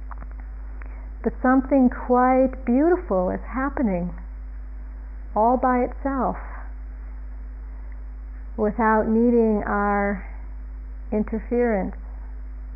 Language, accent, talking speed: English, American, 60 wpm